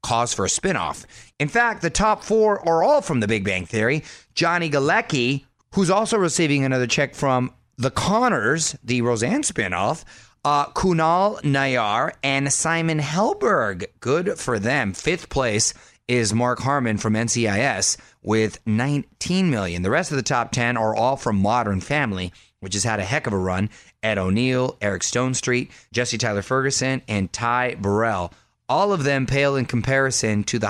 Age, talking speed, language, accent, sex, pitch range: 30-49, 165 wpm, English, American, male, 110-145 Hz